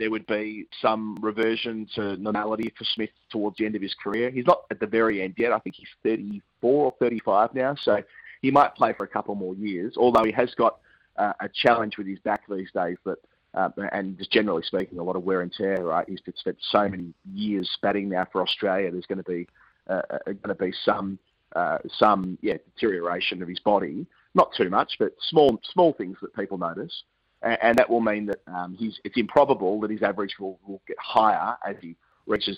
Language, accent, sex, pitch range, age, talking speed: English, Australian, male, 100-115 Hz, 30-49, 215 wpm